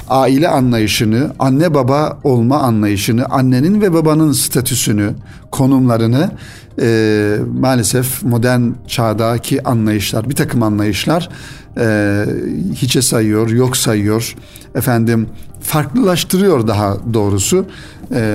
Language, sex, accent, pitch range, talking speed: Turkish, male, native, 115-135 Hz, 95 wpm